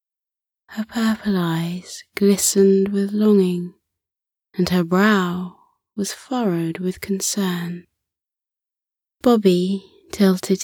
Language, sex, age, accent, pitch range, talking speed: English, female, 20-39, British, 155-200 Hz, 85 wpm